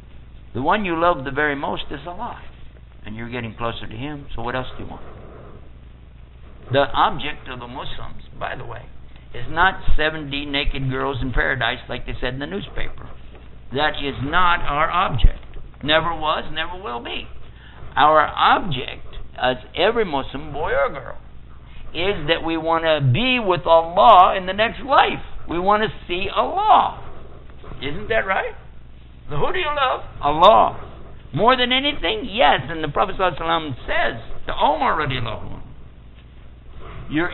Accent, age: American, 60-79